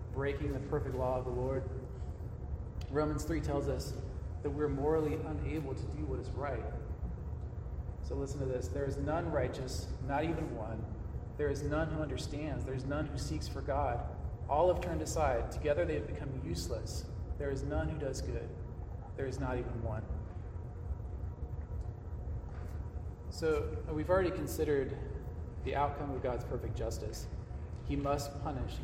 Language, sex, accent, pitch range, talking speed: English, male, American, 80-130 Hz, 160 wpm